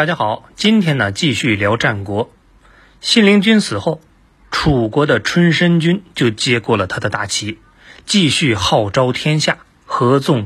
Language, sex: Chinese, male